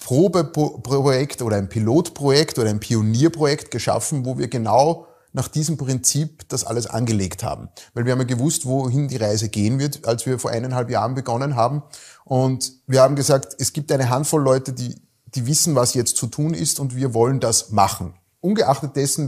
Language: German